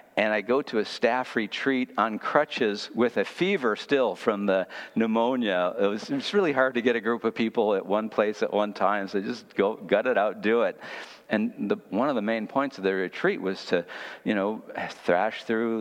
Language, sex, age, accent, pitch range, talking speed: English, male, 50-69, American, 95-115 Hz, 215 wpm